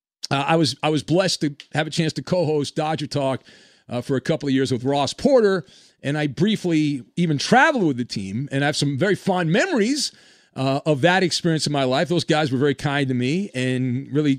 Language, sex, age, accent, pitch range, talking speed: English, male, 40-59, American, 145-200 Hz, 225 wpm